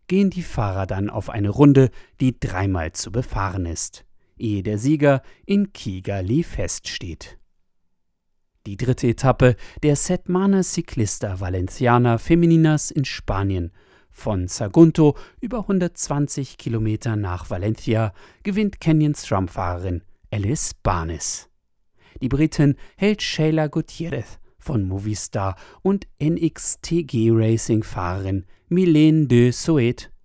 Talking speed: 105 wpm